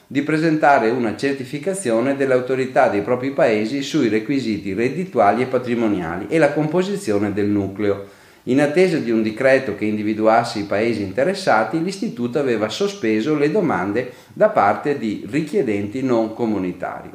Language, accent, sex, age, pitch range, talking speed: Italian, native, male, 40-59, 110-150 Hz, 140 wpm